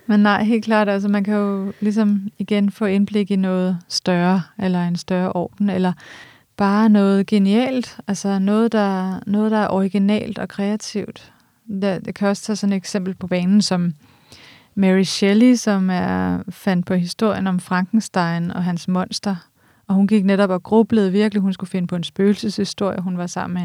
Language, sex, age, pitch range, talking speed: Danish, female, 30-49, 175-205 Hz, 185 wpm